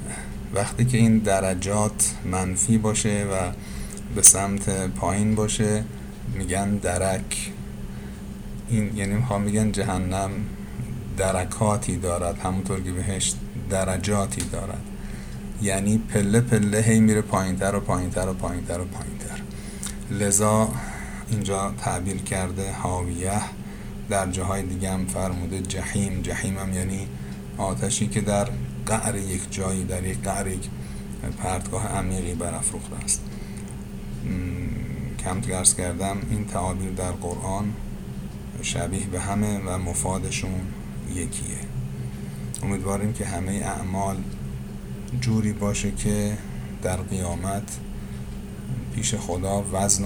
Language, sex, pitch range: Persian, male, 85-100 Hz